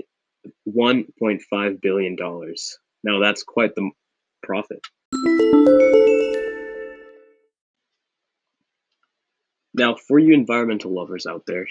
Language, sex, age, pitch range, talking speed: English, male, 20-39, 100-125 Hz, 70 wpm